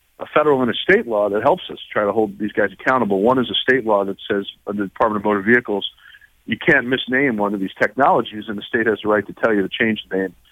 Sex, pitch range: male, 100-120 Hz